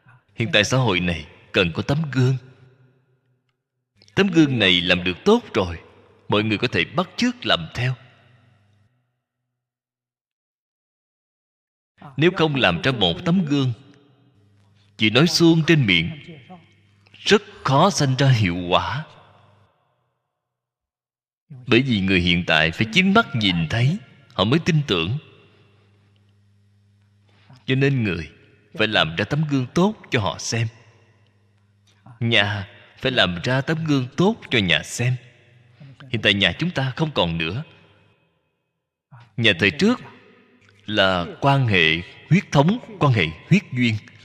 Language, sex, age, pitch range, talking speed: Vietnamese, male, 20-39, 100-140 Hz, 135 wpm